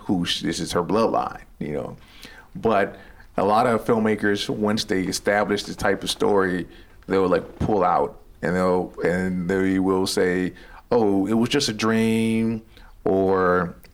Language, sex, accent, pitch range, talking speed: English, male, American, 95-110 Hz, 150 wpm